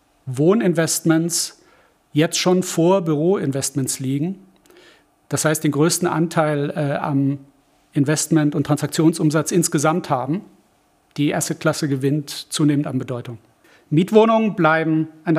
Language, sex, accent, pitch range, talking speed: German, male, German, 145-170 Hz, 110 wpm